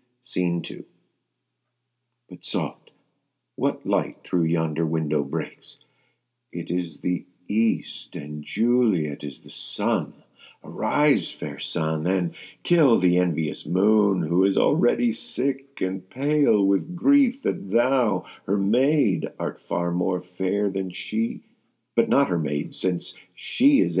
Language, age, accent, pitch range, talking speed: English, 50-69, American, 85-110 Hz, 130 wpm